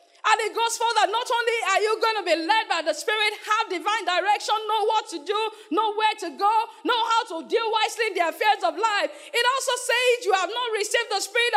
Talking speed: 240 wpm